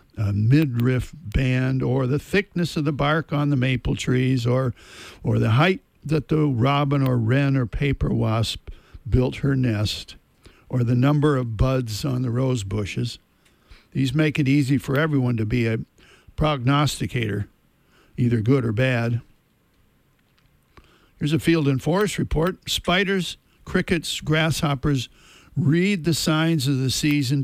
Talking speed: 145 wpm